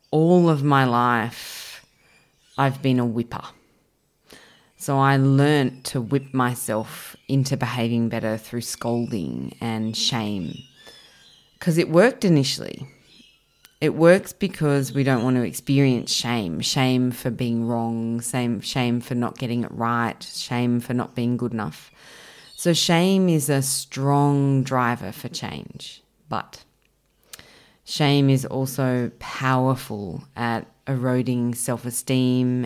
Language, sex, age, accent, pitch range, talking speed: English, female, 20-39, Australian, 120-145 Hz, 120 wpm